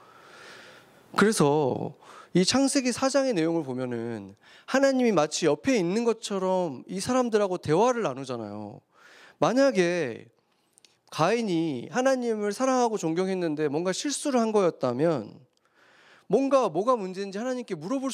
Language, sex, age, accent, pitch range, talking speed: English, male, 30-49, Korean, 130-200 Hz, 95 wpm